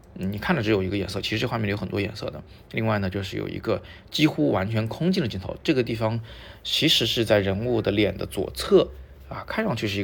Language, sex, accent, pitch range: Chinese, male, native, 100-125 Hz